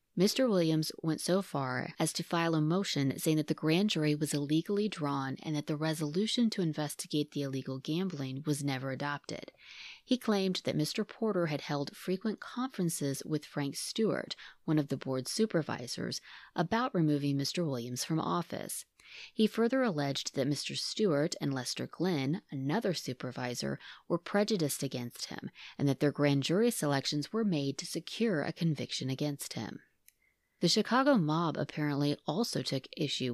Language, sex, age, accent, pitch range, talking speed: English, female, 30-49, American, 140-185 Hz, 160 wpm